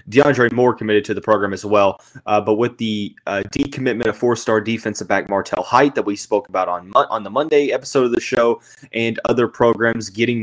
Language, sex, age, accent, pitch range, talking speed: English, male, 20-39, American, 105-140 Hz, 205 wpm